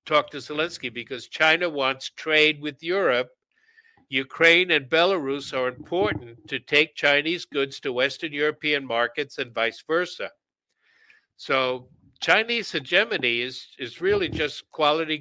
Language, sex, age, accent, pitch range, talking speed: English, male, 60-79, American, 130-165 Hz, 130 wpm